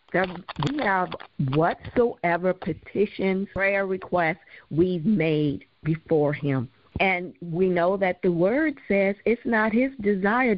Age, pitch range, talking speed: 50-69, 175-250 Hz, 120 wpm